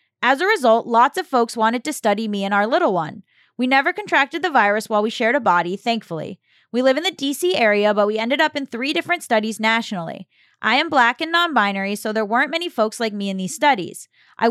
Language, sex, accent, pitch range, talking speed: English, female, American, 220-310 Hz, 230 wpm